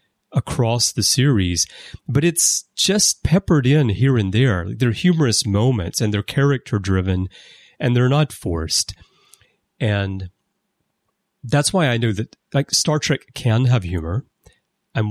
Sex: male